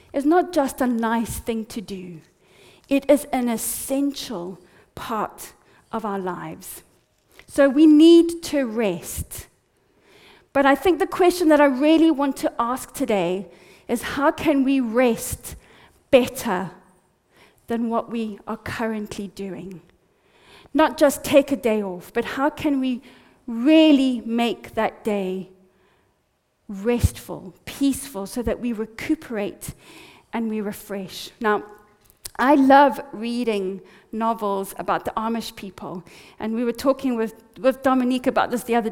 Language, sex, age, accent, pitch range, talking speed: English, female, 40-59, British, 215-280 Hz, 135 wpm